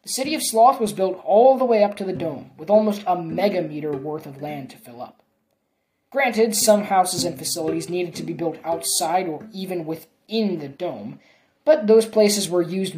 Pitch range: 160-225 Hz